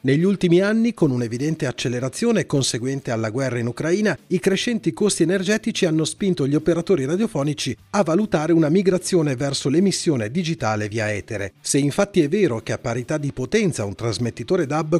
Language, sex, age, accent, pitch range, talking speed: Italian, male, 40-59, native, 115-185 Hz, 165 wpm